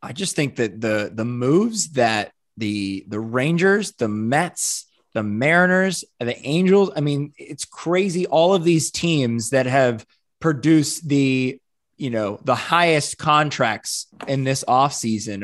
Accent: American